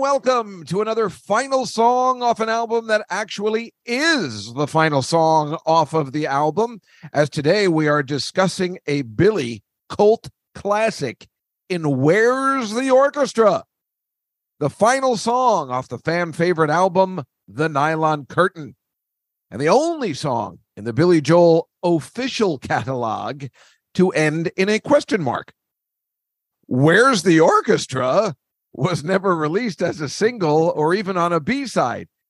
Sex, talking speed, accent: male, 135 wpm, American